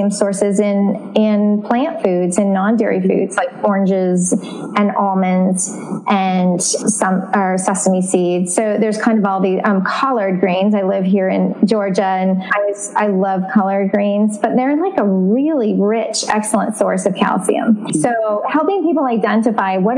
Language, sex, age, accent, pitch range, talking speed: English, female, 20-39, American, 200-235 Hz, 160 wpm